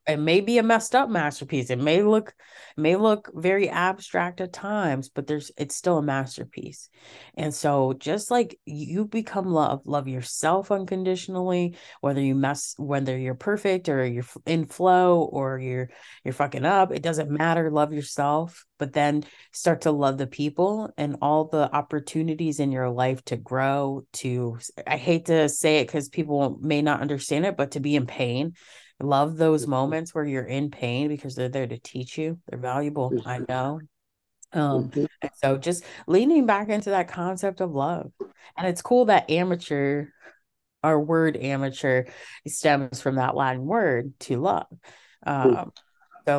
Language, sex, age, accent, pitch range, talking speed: English, female, 30-49, American, 135-170 Hz, 165 wpm